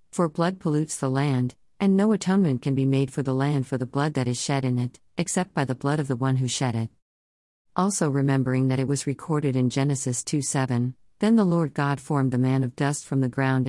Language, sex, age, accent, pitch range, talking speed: English, female, 50-69, American, 125-155 Hz, 235 wpm